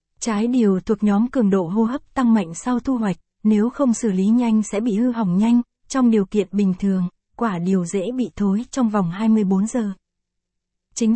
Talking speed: 205 wpm